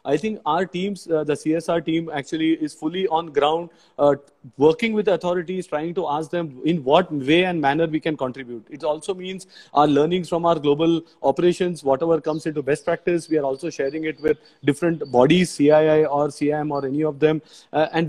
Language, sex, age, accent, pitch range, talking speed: English, male, 30-49, Indian, 150-180 Hz, 200 wpm